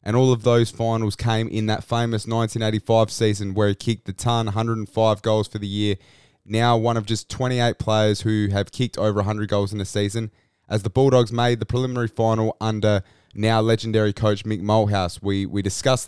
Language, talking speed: English, 195 wpm